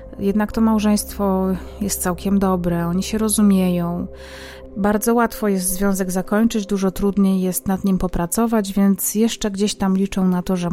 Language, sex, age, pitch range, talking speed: Polish, female, 30-49, 180-210 Hz, 155 wpm